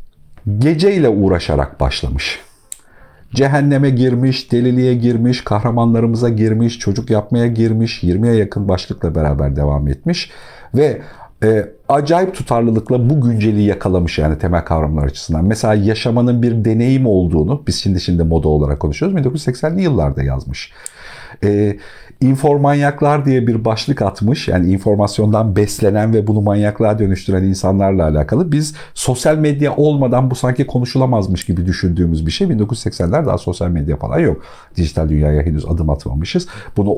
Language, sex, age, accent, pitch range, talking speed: Turkish, male, 50-69, native, 85-125 Hz, 130 wpm